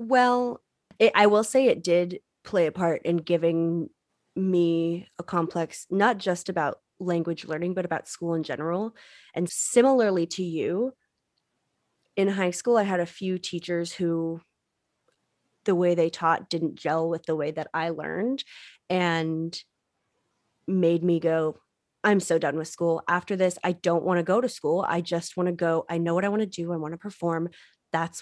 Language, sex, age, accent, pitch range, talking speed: English, female, 20-39, American, 165-205 Hz, 180 wpm